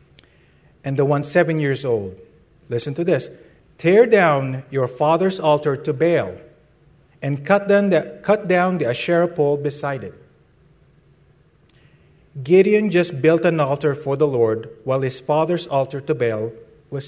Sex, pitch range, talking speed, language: male, 145-190 Hz, 140 wpm, English